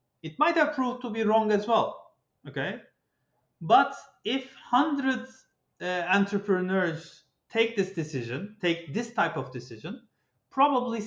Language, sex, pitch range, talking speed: Turkish, male, 165-235 Hz, 130 wpm